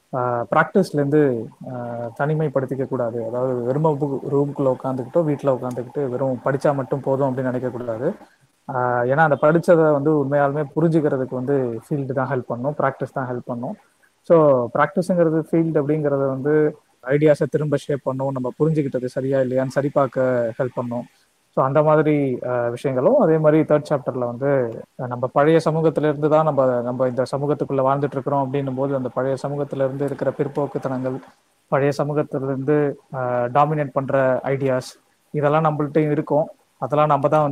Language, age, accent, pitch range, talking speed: Tamil, 20-39, native, 130-150 Hz, 135 wpm